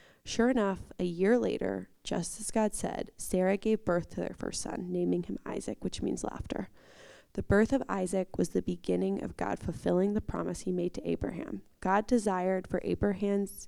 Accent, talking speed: American, 185 wpm